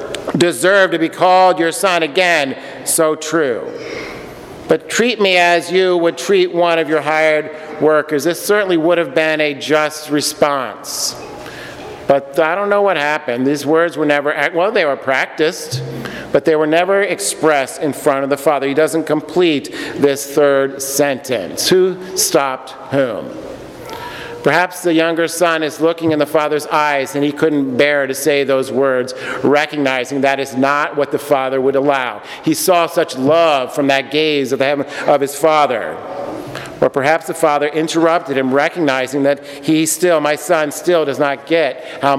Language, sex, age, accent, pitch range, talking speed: English, male, 50-69, American, 145-175 Hz, 165 wpm